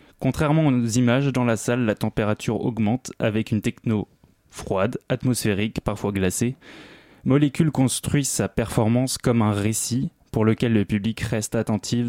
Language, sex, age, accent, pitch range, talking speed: French, male, 20-39, French, 110-125 Hz, 145 wpm